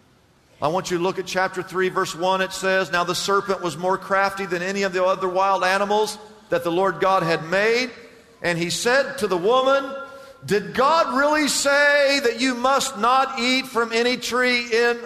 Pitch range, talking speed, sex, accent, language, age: 135-205 Hz, 200 wpm, male, American, English, 50-69